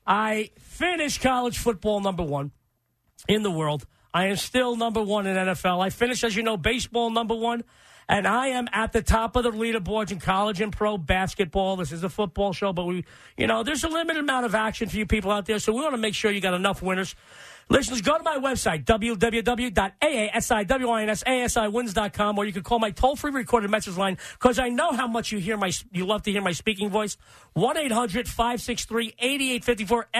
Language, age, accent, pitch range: English, 40-59, American, 195-235 Hz